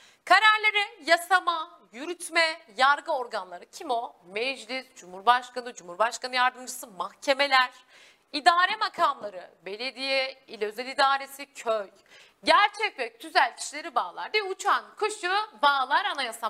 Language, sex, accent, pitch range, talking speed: Turkish, female, native, 260-395 Hz, 105 wpm